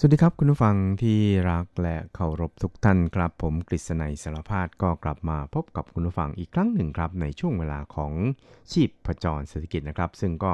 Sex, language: male, Thai